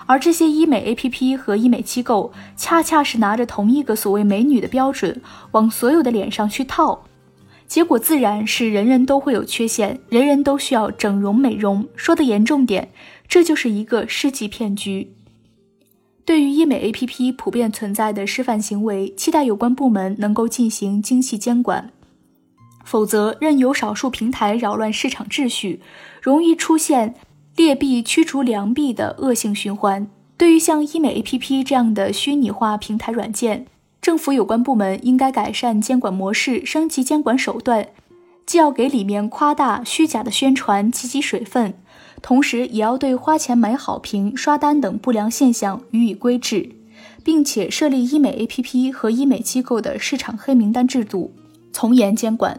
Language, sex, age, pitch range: Chinese, female, 20-39, 215-275 Hz